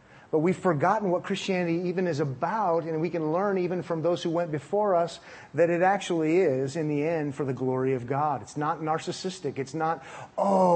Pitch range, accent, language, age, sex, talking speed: 145-195 Hz, American, English, 30-49, male, 205 wpm